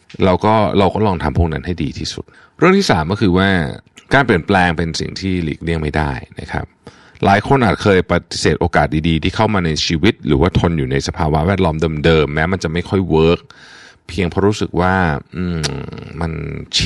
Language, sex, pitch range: Thai, male, 80-100 Hz